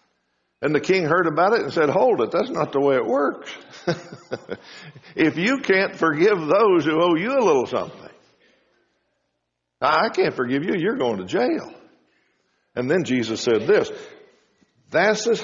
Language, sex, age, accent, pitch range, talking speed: English, male, 60-79, American, 125-210 Hz, 165 wpm